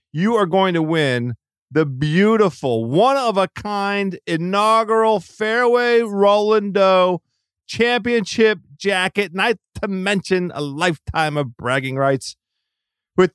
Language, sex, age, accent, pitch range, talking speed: English, male, 40-59, American, 155-210 Hz, 100 wpm